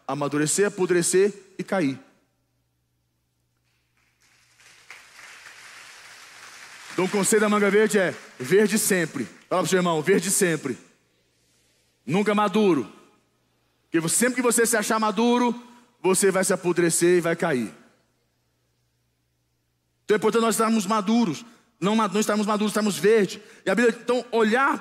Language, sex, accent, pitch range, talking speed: Portuguese, male, Brazilian, 165-230 Hz, 125 wpm